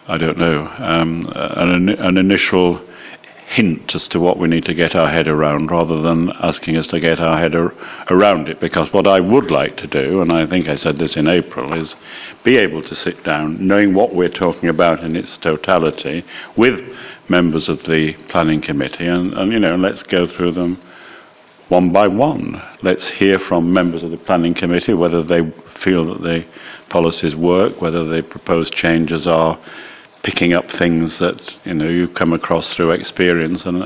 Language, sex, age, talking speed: English, male, 60-79, 185 wpm